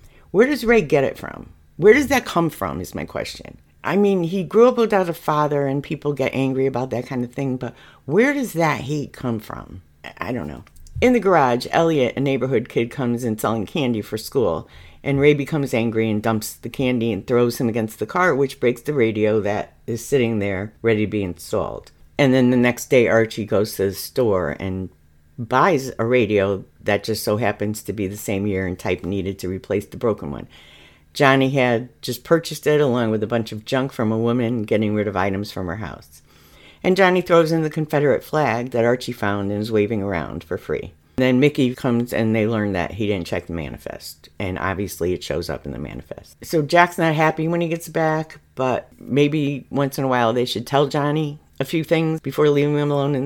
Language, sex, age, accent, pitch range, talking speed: English, female, 50-69, American, 100-145 Hz, 220 wpm